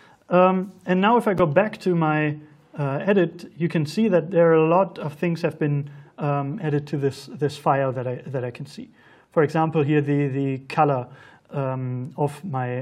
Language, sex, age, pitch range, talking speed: English, male, 30-49, 135-170 Hz, 205 wpm